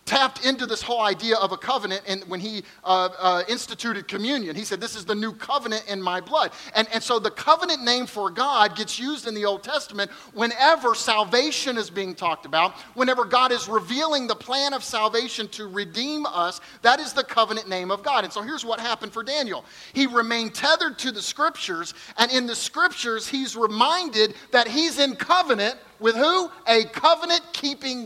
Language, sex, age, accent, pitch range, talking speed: English, male, 40-59, American, 190-260 Hz, 195 wpm